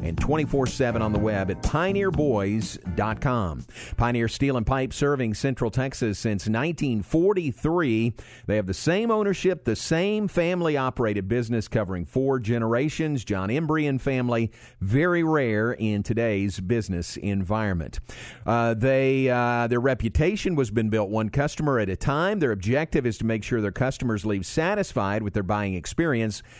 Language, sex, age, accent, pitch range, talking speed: English, male, 50-69, American, 105-140 Hz, 150 wpm